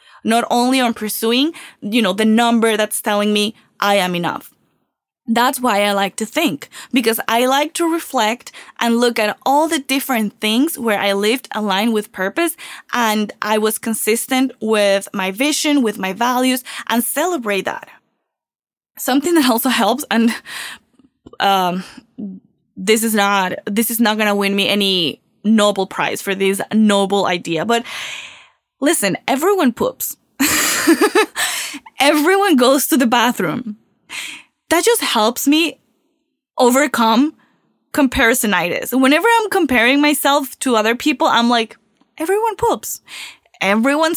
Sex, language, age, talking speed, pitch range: female, English, 10-29, 135 wpm, 215-300 Hz